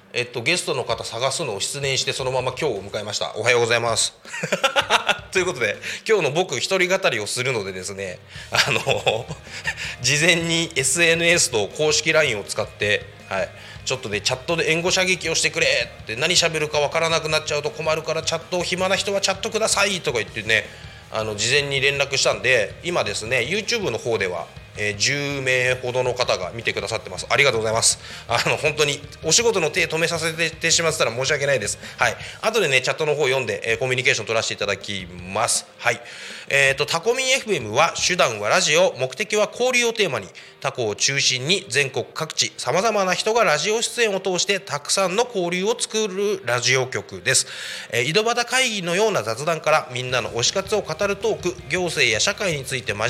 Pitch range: 130-190 Hz